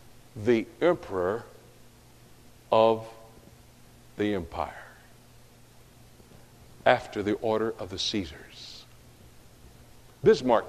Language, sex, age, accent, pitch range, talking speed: English, male, 60-79, American, 110-130 Hz, 65 wpm